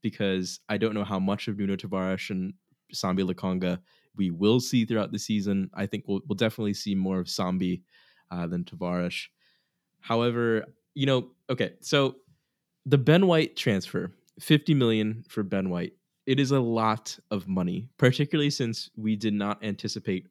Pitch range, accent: 95-125 Hz, American